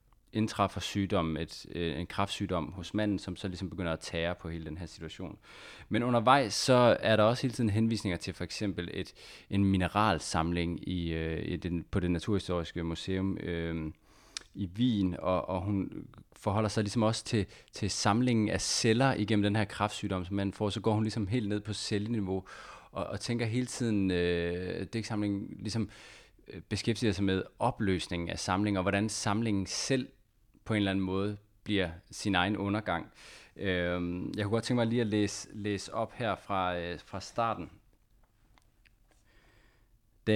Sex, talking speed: male, 170 wpm